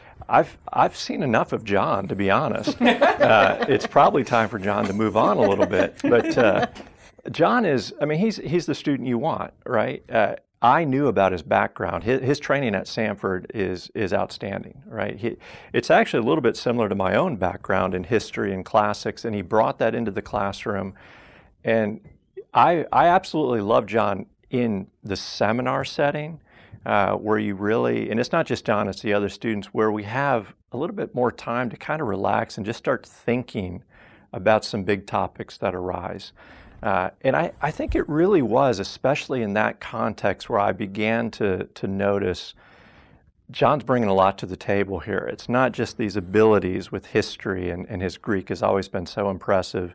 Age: 50-69